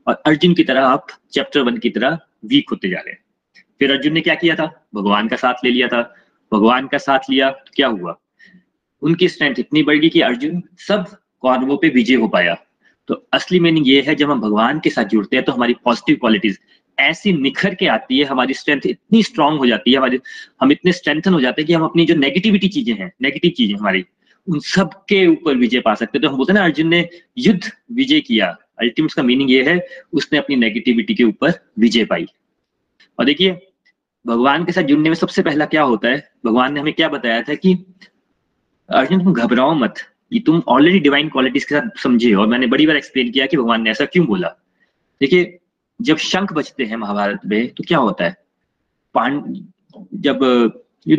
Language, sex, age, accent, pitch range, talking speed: Hindi, male, 30-49, native, 130-185 Hz, 205 wpm